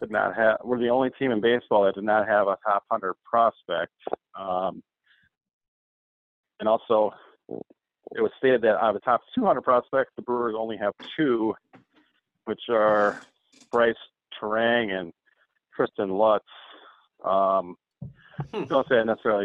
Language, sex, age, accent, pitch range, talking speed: English, male, 40-59, American, 105-125 Hz, 145 wpm